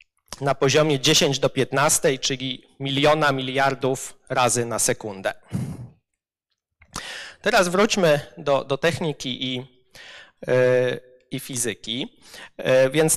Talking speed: 100 wpm